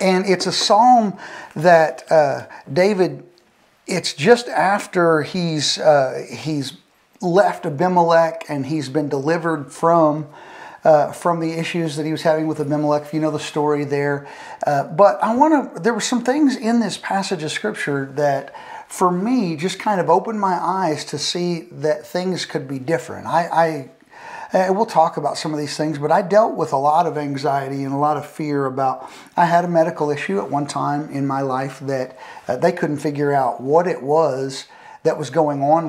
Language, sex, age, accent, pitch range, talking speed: English, male, 40-59, American, 145-175 Hz, 190 wpm